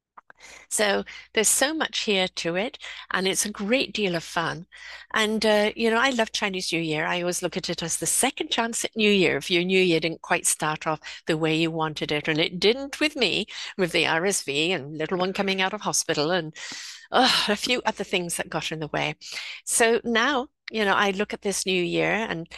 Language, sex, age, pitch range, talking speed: English, female, 60-79, 165-210 Hz, 225 wpm